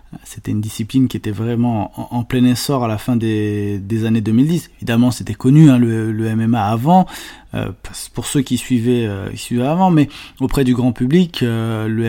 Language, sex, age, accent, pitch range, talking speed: French, male, 20-39, French, 115-140 Hz, 200 wpm